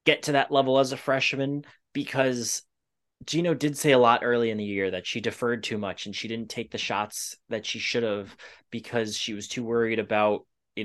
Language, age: English, 20-39